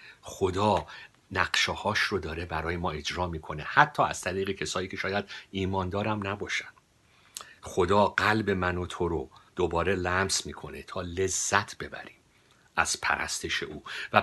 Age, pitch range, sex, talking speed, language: 50-69, 80-100 Hz, male, 135 wpm, Persian